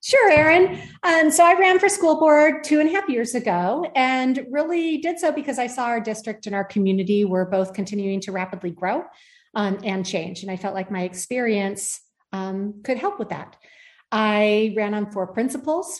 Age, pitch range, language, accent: 40-59, 190-240 Hz, English, American